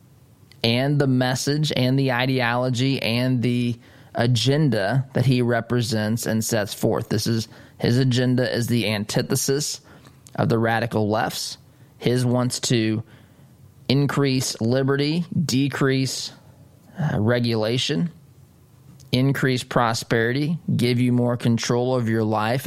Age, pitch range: 20-39, 120-140 Hz